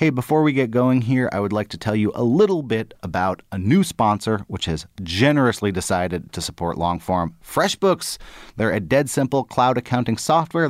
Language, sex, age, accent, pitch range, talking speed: English, male, 30-49, American, 100-135 Hz, 190 wpm